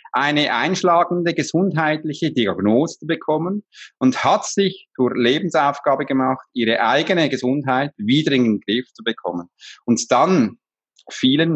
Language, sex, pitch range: German, male, 135-185 Hz